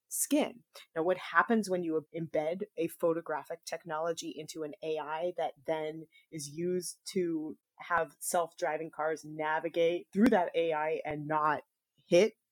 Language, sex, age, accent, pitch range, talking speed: English, female, 30-49, American, 165-200 Hz, 135 wpm